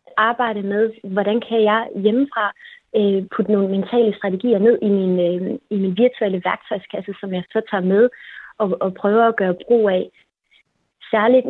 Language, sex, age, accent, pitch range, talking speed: Danish, female, 30-49, native, 195-230 Hz, 165 wpm